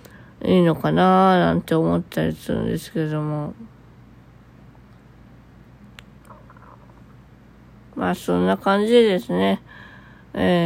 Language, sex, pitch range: Japanese, female, 150-215 Hz